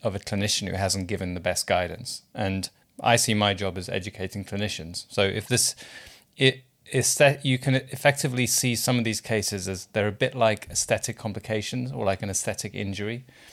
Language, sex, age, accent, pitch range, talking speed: English, male, 30-49, British, 100-120 Hz, 190 wpm